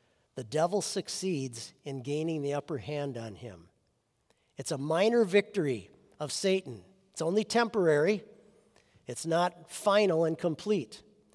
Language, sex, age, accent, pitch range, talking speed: English, male, 50-69, American, 135-180 Hz, 125 wpm